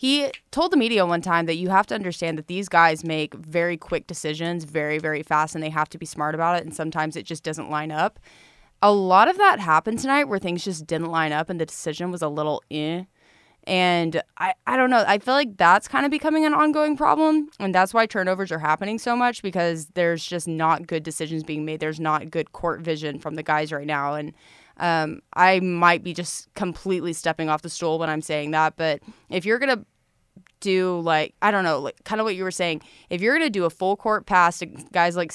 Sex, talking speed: female, 240 wpm